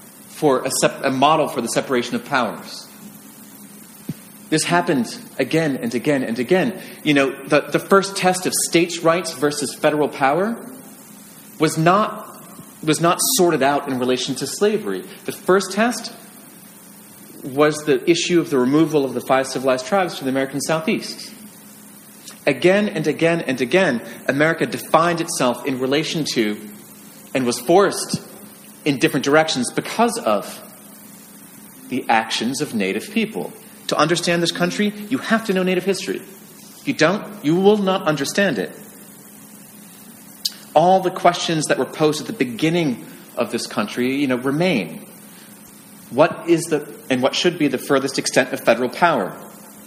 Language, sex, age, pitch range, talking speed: English, male, 30-49, 140-205 Hz, 150 wpm